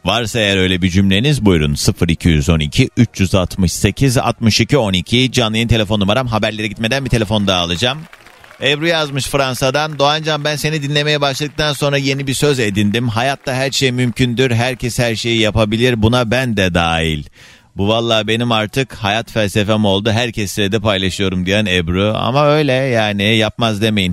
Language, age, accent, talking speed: Turkish, 40-59, native, 150 wpm